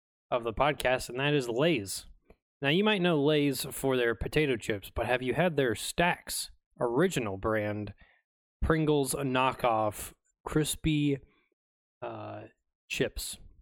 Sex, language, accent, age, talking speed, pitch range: male, English, American, 20-39, 130 wpm, 110-140 Hz